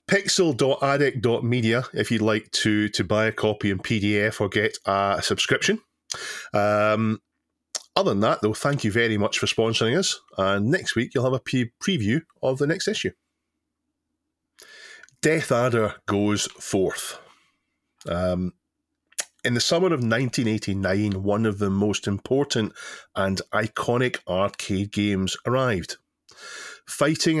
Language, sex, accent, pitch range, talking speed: English, male, British, 100-125 Hz, 130 wpm